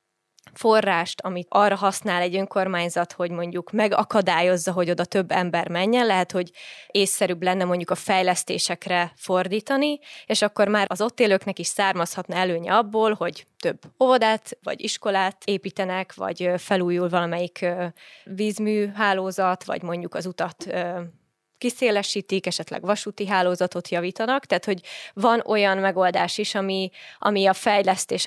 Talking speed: 130 wpm